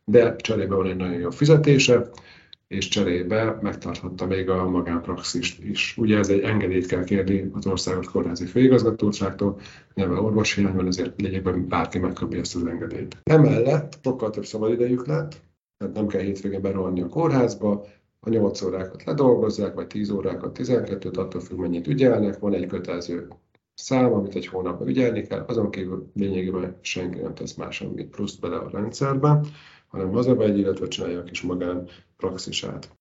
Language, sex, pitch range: Hungarian, male, 95-115 Hz